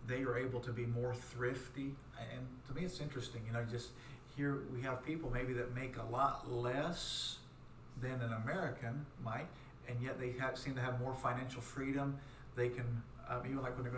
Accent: American